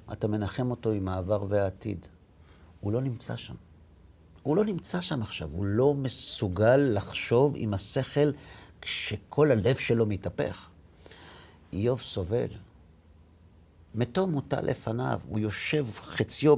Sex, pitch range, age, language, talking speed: male, 85-125 Hz, 50-69, Hebrew, 120 wpm